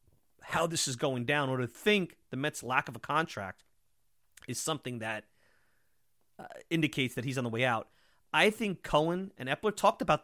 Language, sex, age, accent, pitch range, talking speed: English, male, 30-49, American, 120-170 Hz, 190 wpm